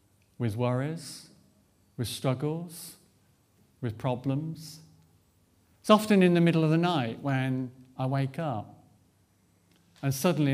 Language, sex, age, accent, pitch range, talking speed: English, male, 50-69, British, 110-155 Hz, 115 wpm